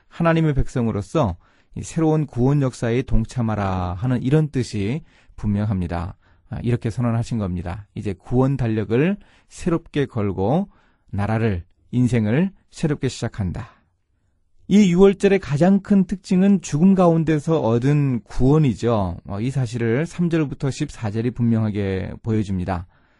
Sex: male